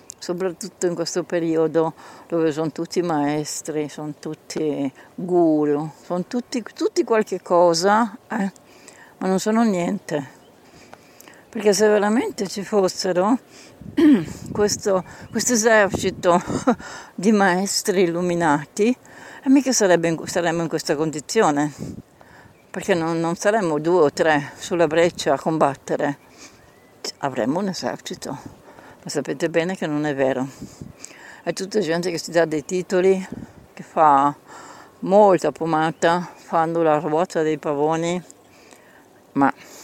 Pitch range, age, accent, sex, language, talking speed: 155-200 Hz, 60-79, native, female, Italian, 110 wpm